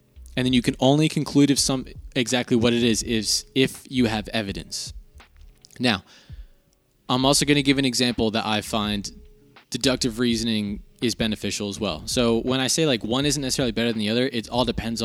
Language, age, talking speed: English, 20-39, 195 wpm